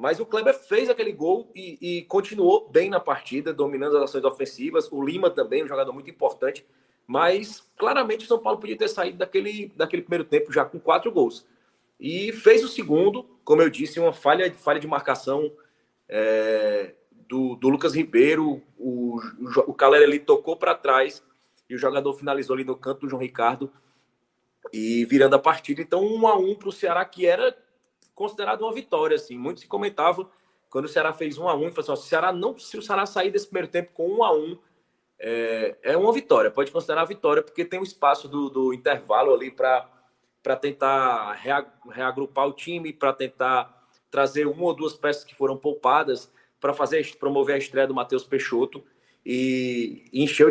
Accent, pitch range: Brazilian, 135-225 Hz